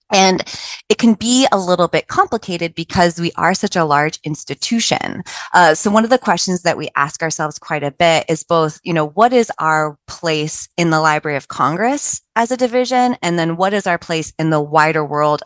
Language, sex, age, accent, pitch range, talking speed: English, female, 20-39, American, 145-185 Hz, 210 wpm